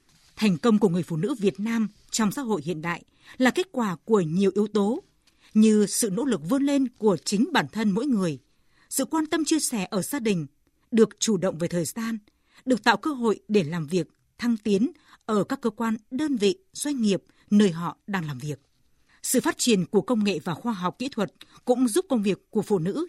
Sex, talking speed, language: female, 225 wpm, Vietnamese